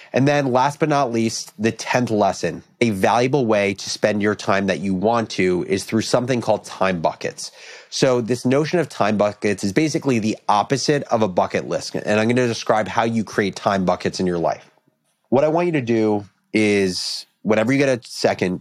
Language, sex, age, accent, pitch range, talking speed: English, male, 30-49, American, 105-130 Hz, 210 wpm